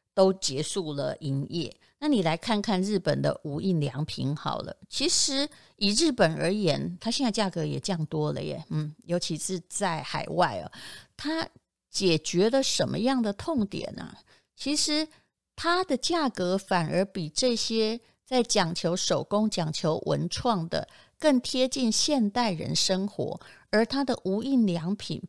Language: Chinese